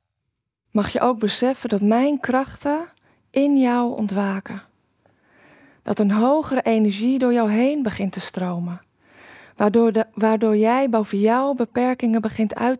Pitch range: 205-250 Hz